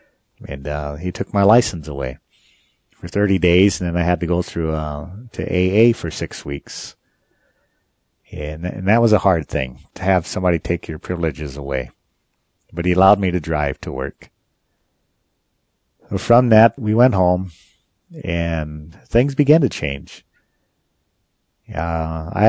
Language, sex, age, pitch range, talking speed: English, male, 50-69, 80-100 Hz, 150 wpm